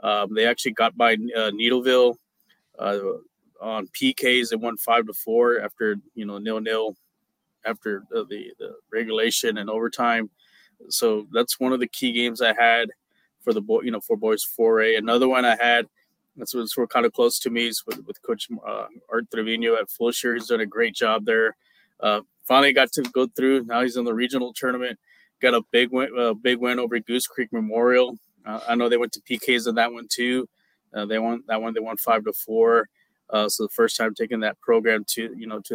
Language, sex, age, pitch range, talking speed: English, male, 20-39, 110-130 Hz, 205 wpm